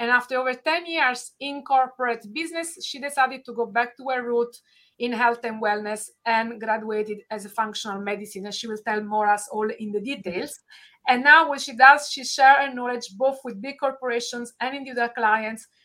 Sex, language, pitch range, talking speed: female, English, 215-265 Hz, 195 wpm